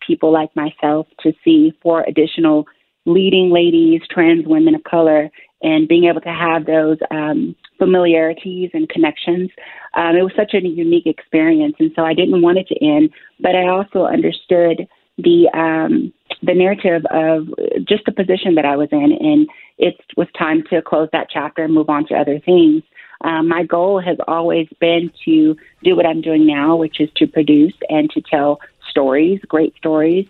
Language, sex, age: English, female, 30-49